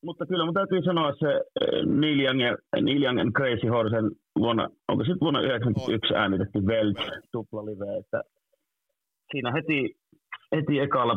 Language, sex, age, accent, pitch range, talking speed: Finnish, male, 30-49, native, 105-130 Hz, 135 wpm